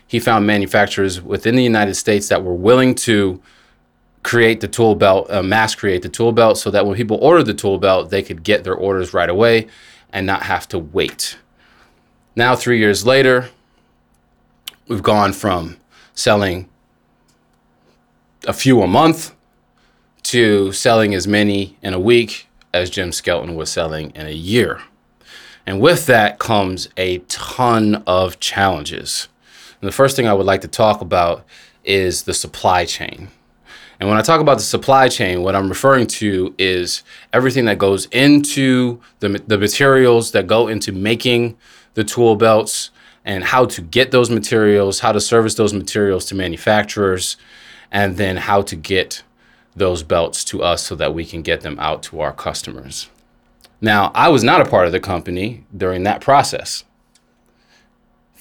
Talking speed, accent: 165 wpm, American